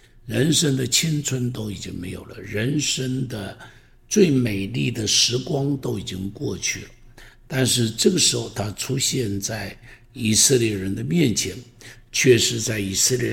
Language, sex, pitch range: Chinese, male, 105-125 Hz